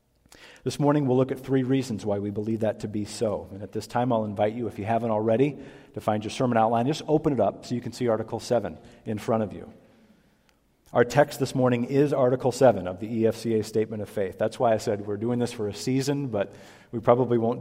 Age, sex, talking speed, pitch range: 40-59, male, 240 wpm, 105-130 Hz